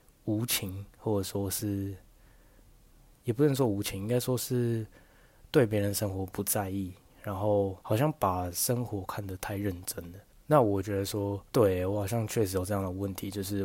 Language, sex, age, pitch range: Chinese, male, 20-39, 95-115 Hz